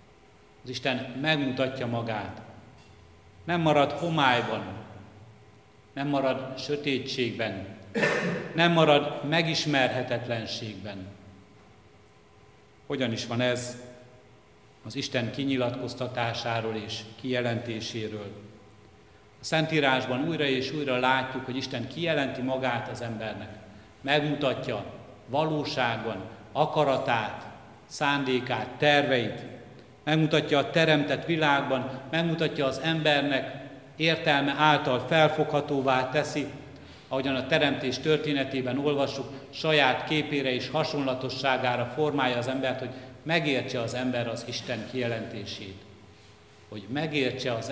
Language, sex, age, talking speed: Hungarian, male, 60-79, 90 wpm